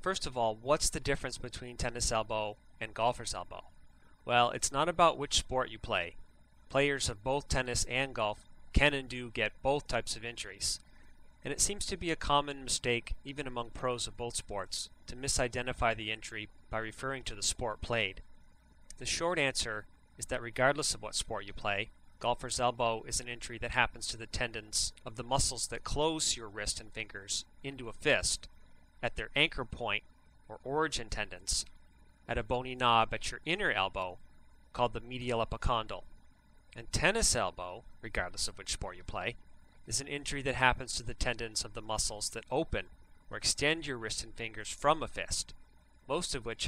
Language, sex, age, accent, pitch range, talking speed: English, male, 30-49, American, 100-125 Hz, 185 wpm